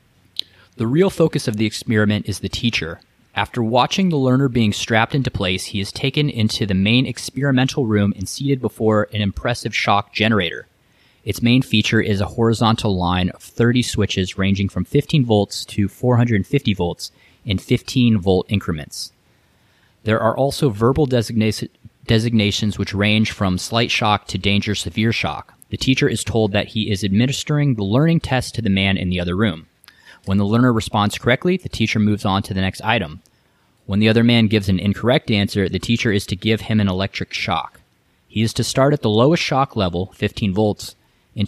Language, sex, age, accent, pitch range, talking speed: English, male, 30-49, American, 100-120 Hz, 180 wpm